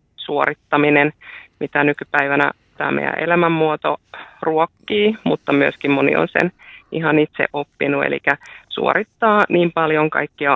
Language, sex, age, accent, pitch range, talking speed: Finnish, female, 30-49, native, 145-165 Hz, 115 wpm